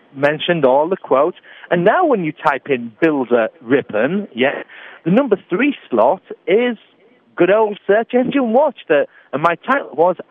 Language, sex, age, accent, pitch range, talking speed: English, male, 40-59, British, 140-205 Hz, 150 wpm